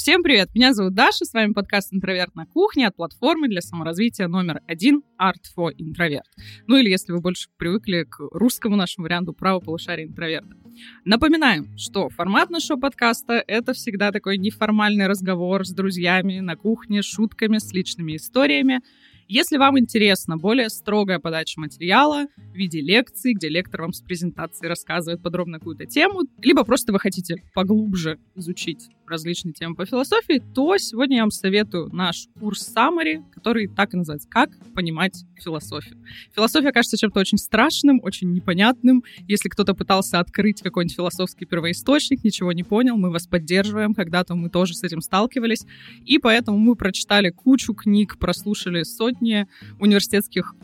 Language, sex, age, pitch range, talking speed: Russian, female, 20-39, 175-235 Hz, 155 wpm